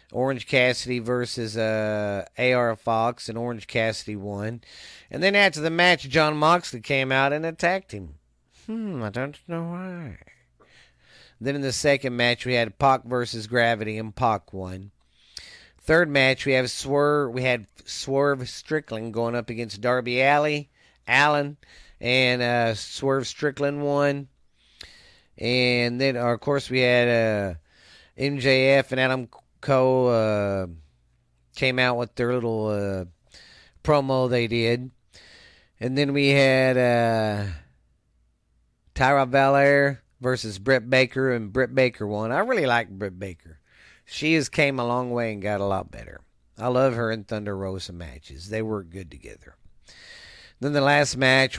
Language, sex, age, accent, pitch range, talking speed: English, male, 40-59, American, 110-135 Hz, 150 wpm